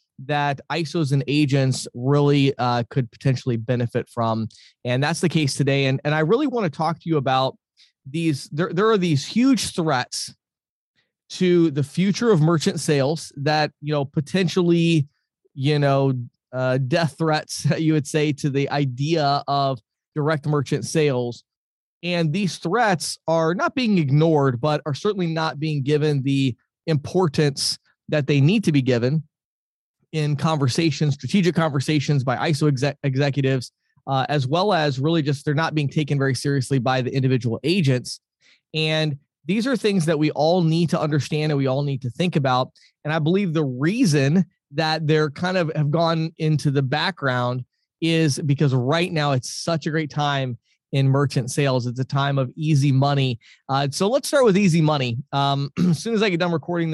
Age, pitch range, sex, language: 20-39, 135-165 Hz, male, English